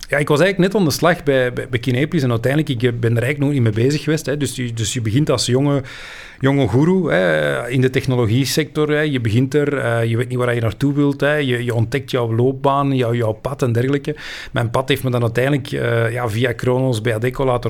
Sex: male